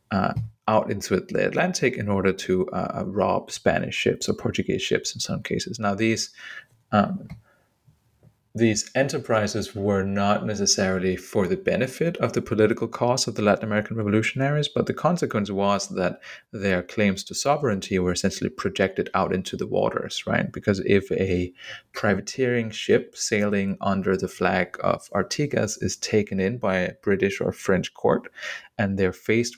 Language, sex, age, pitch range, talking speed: English, male, 30-49, 95-115 Hz, 160 wpm